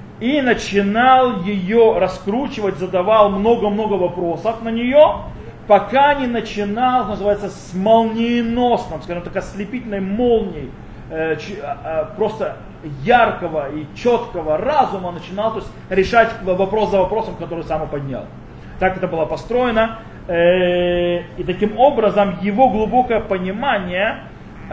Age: 20-39